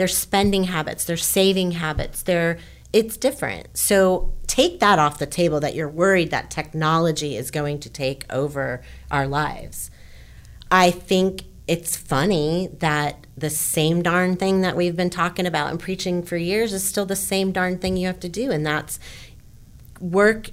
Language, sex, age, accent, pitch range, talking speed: English, female, 30-49, American, 150-190 Hz, 165 wpm